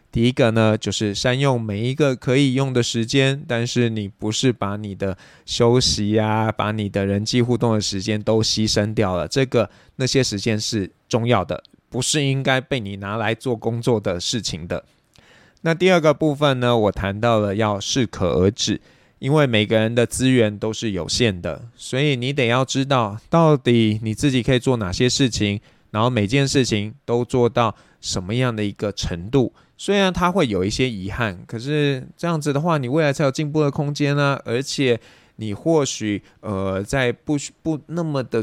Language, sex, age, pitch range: Chinese, male, 20-39, 105-130 Hz